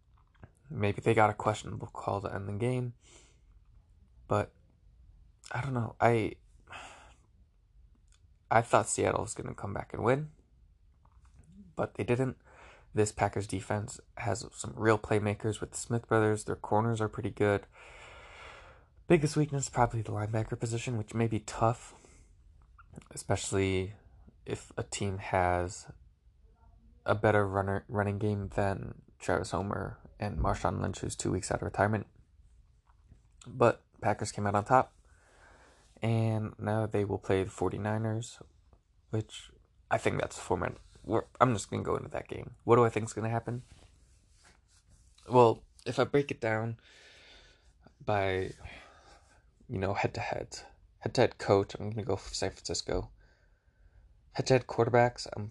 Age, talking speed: 20-39, 145 wpm